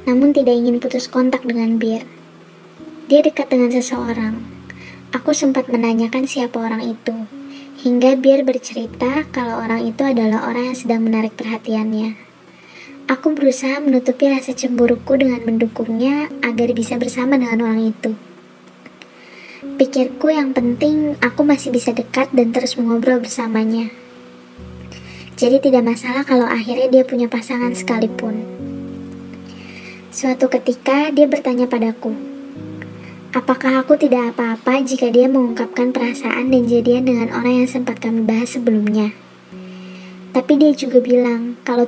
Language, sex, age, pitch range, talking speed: Indonesian, male, 20-39, 230-260 Hz, 130 wpm